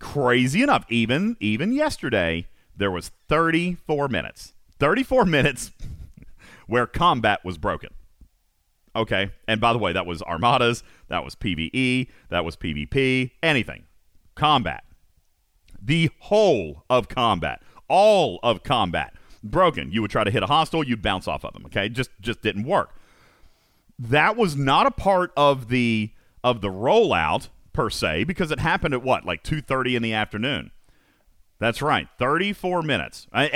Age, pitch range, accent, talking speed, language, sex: 40-59, 95-140 Hz, American, 150 wpm, English, male